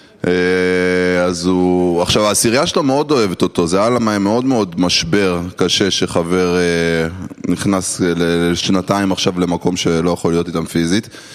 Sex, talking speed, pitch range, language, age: male, 130 wpm, 90-125 Hz, Hebrew, 20-39